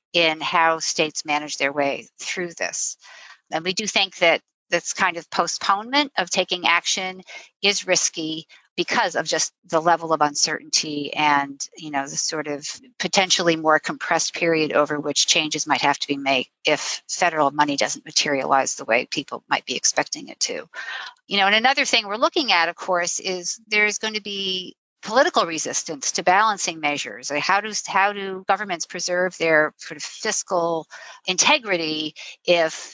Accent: American